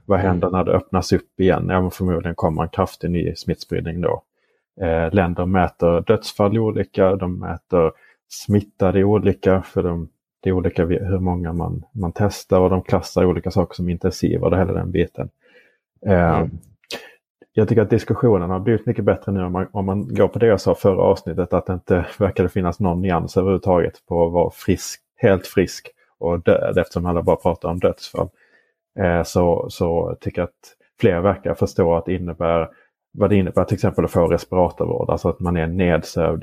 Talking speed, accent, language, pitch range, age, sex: 185 wpm, Norwegian, English, 85-100 Hz, 30-49, male